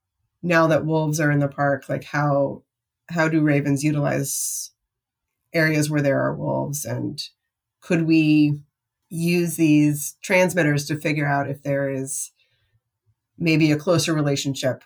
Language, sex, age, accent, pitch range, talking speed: English, female, 30-49, American, 135-160 Hz, 135 wpm